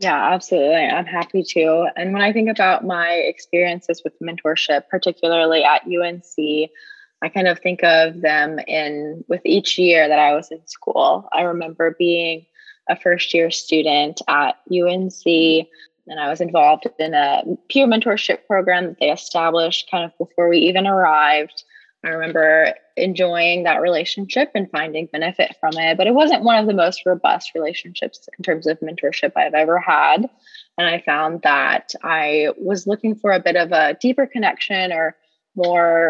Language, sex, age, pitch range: English, female, 20-39, 160-195 Hz